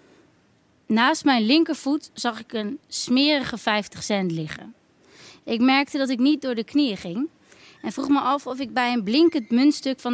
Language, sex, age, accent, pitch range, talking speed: Dutch, female, 20-39, Dutch, 200-260 Hz, 180 wpm